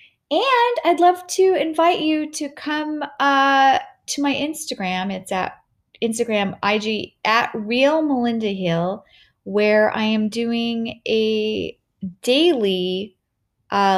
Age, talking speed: 30-49, 105 wpm